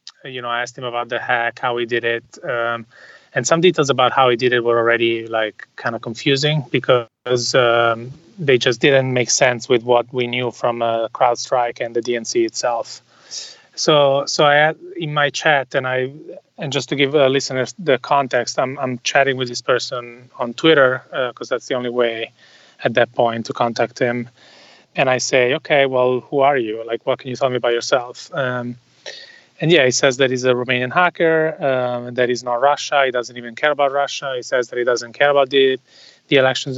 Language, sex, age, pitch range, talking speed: English, male, 30-49, 120-140 Hz, 210 wpm